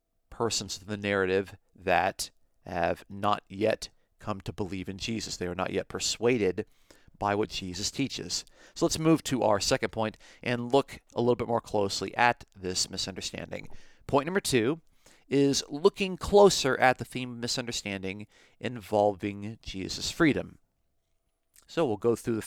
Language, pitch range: English, 100-130 Hz